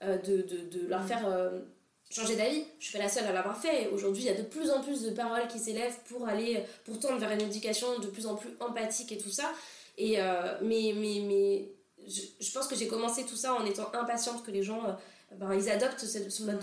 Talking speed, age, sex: 250 wpm, 20-39, female